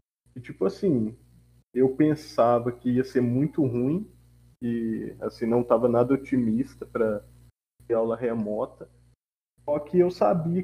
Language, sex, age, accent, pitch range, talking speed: Portuguese, male, 20-39, Brazilian, 115-140 Hz, 135 wpm